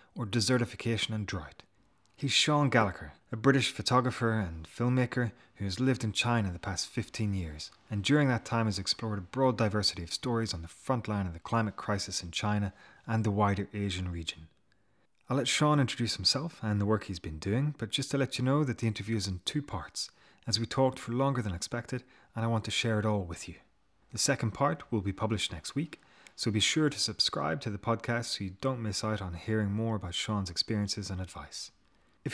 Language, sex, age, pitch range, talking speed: English, male, 30-49, 95-125 Hz, 215 wpm